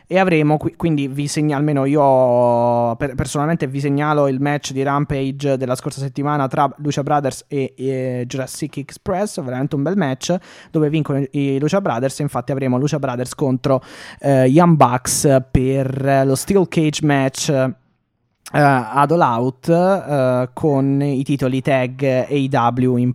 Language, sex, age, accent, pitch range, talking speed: Italian, male, 20-39, native, 130-155 Hz, 160 wpm